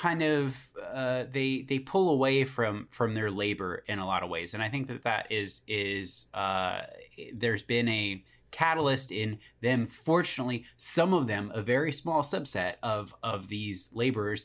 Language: English